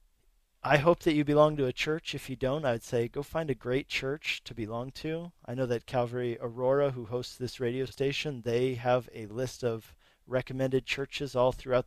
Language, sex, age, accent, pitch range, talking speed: English, male, 40-59, American, 110-135 Hz, 200 wpm